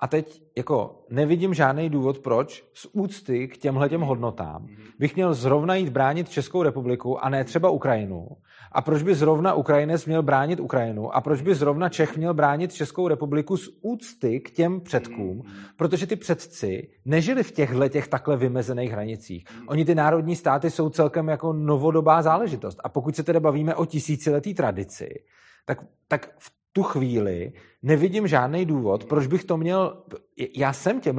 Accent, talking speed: native, 170 wpm